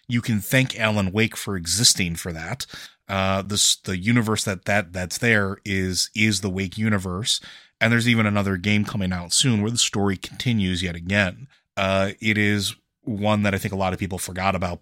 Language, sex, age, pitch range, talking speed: English, male, 30-49, 95-110 Hz, 200 wpm